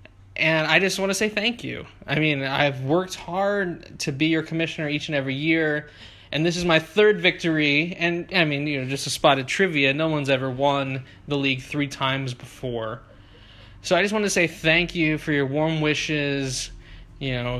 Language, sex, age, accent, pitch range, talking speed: English, male, 20-39, American, 125-165 Hz, 205 wpm